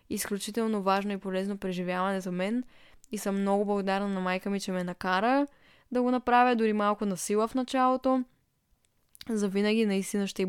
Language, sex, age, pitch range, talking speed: Bulgarian, female, 10-29, 195-235 Hz, 170 wpm